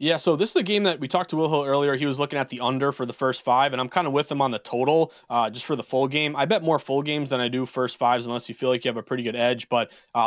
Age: 20-39